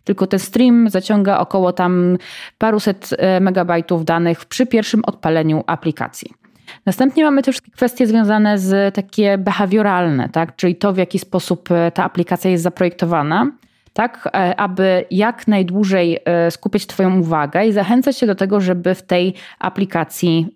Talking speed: 135 wpm